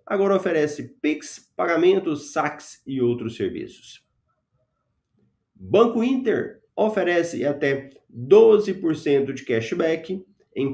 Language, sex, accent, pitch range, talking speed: Portuguese, male, Brazilian, 115-175 Hz, 90 wpm